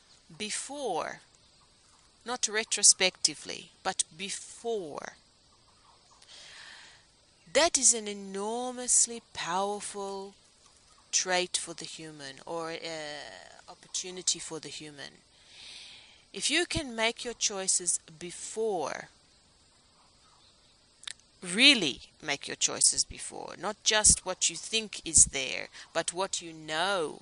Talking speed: 95 wpm